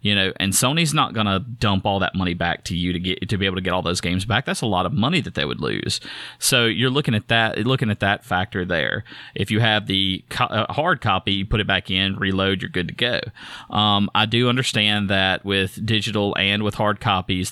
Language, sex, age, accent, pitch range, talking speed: English, male, 30-49, American, 95-110 Hz, 245 wpm